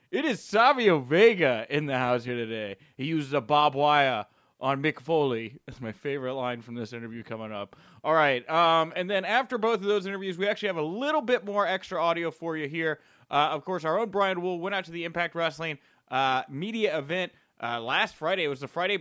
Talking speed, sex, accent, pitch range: 225 wpm, male, American, 150-210 Hz